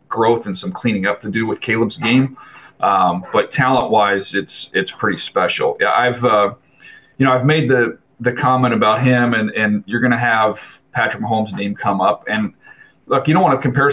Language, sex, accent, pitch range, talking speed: English, male, American, 110-130 Hz, 205 wpm